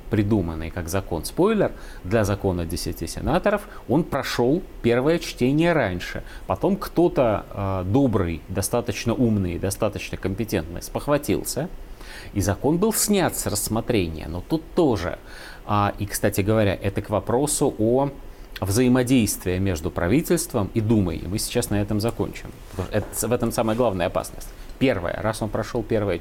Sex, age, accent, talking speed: male, 30-49, native, 135 wpm